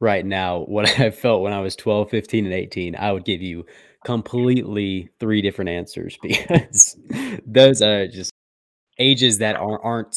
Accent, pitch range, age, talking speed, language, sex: American, 90-110 Hz, 20-39, 160 wpm, English, male